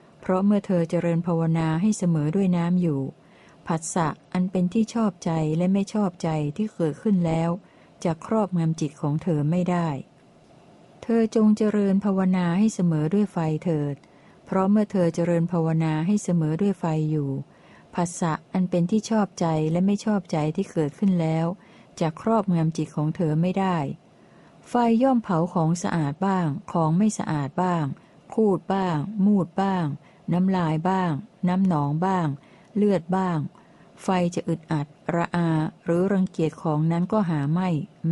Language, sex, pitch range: Thai, female, 160-195 Hz